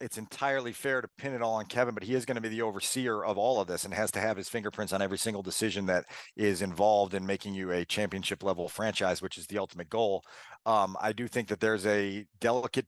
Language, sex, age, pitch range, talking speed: English, male, 40-59, 105-130 Hz, 250 wpm